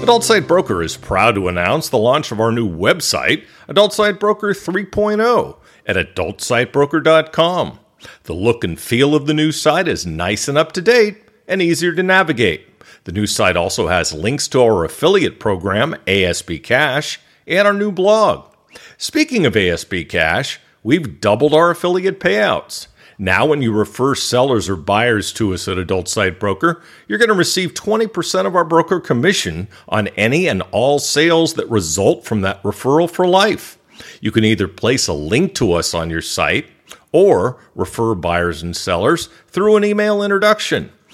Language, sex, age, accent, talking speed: English, male, 50-69, American, 165 wpm